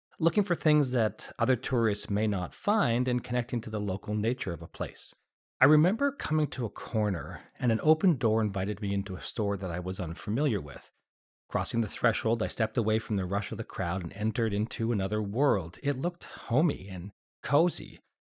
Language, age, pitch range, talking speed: English, 40-59, 100-125 Hz, 200 wpm